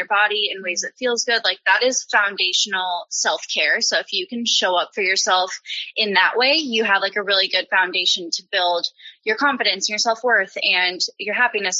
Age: 10-29